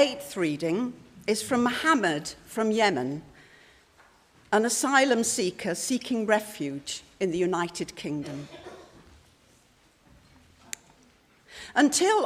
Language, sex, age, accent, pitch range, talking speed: English, female, 60-79, British, 175-245 Hz, 85 wpm